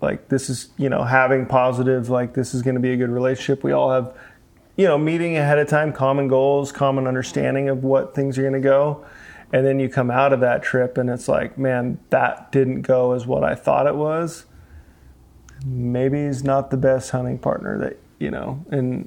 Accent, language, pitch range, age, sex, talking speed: American, English, 125-140 Hz, 30-49, male, 215 wpm